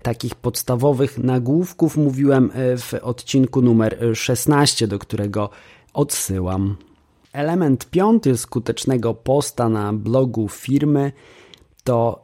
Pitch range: 115-140 Hz